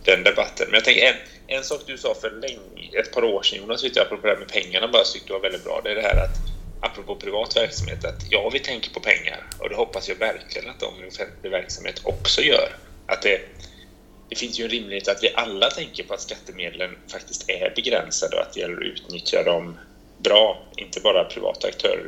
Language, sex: Swedish, male